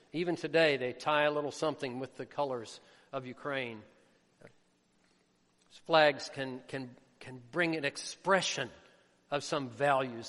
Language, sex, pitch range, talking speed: English, male, 130-165 Hz, 120 wpm